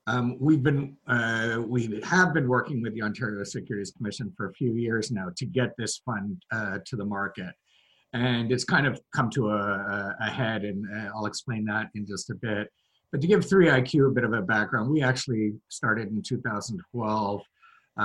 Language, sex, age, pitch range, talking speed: English, male, 50-69, 110-140 Hz, 190 wpm